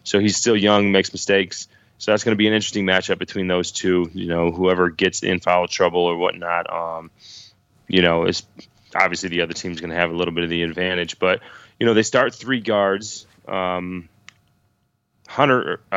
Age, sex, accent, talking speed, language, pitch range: 20-39, male, American, 195 wpm, English, 90-105 Hz